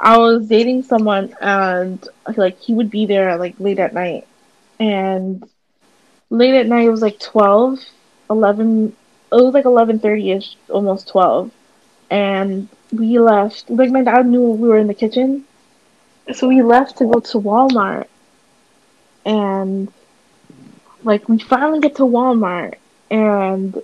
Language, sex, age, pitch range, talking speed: English, female, 20-39, 195-240 Hz, 140 wpm